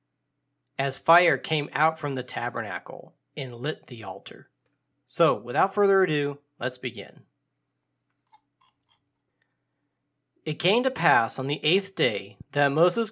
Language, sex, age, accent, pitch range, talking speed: English, male, 40-59, American, 135-180 Hz, 125 wpm